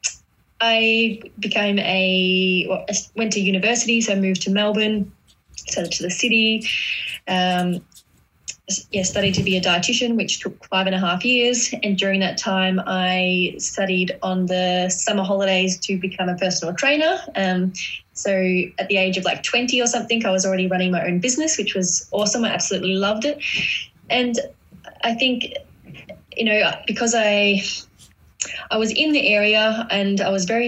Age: 10-29